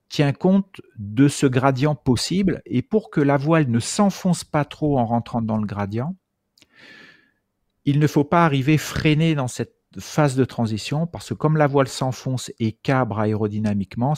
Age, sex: 50-69, male